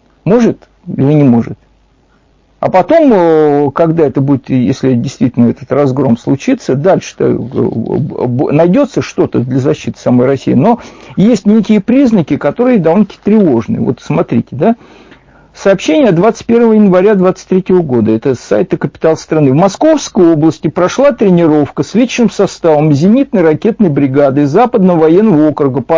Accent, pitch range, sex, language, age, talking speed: native, 145-215 Hz, male, Russian, 50-69, 130 wpm